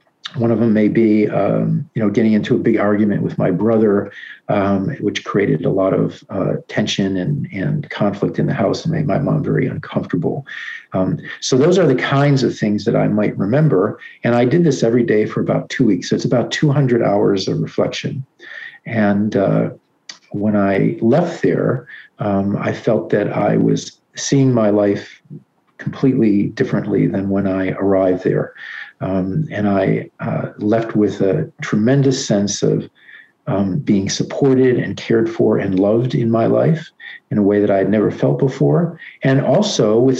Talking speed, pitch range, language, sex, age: 180 wpm, 105-135 Hz, English, male, 50-69